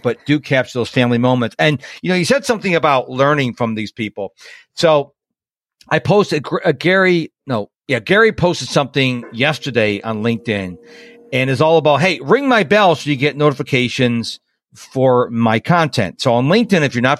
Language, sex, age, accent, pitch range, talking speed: English, male, 50-69, American, 120-160 Hz, 180 wpm